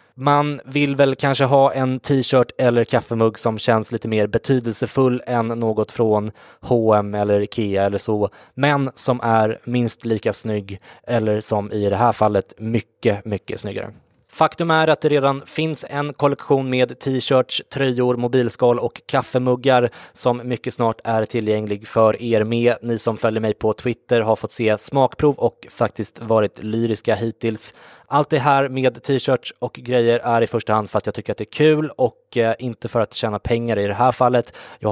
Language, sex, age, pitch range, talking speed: English, male, 20-39, 110-130 Hz, 180 wpm